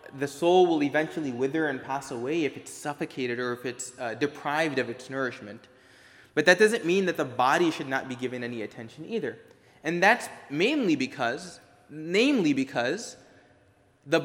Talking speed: 170 wpm